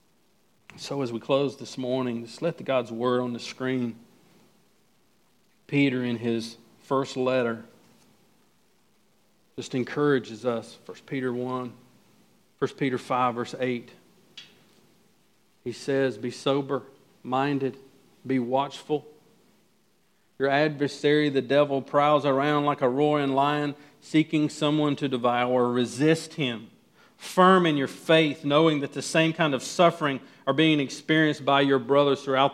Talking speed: 130 wpm